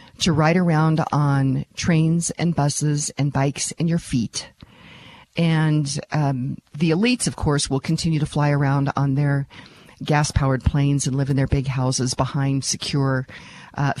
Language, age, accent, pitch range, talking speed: English, 50-69, American, 140-175 Hz, 155 wpm